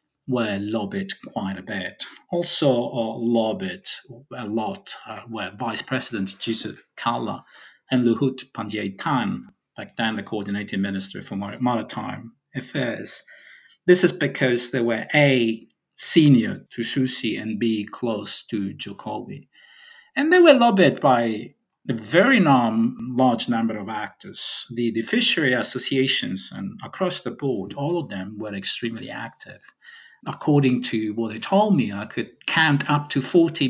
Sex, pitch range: male, 110-165 Hz